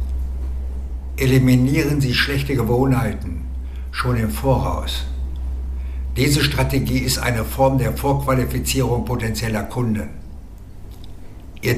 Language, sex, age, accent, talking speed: German, male, 60-79, German, 85 wpm